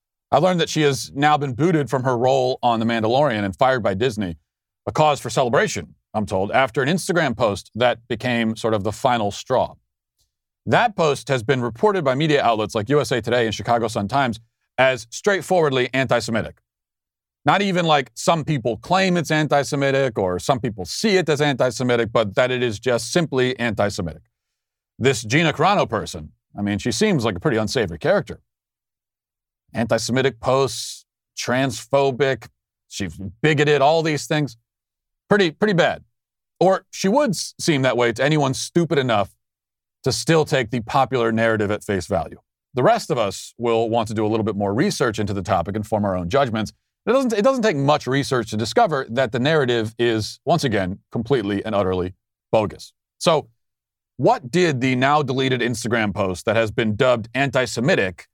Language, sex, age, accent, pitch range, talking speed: English, male, 40-59, American, 110-145 Hz, 175 wpm